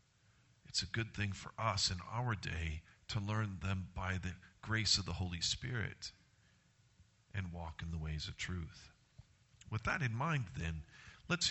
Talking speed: 165 wpm